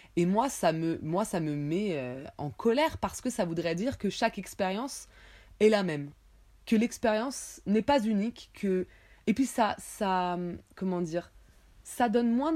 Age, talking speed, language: 20-39, 170 wpm, French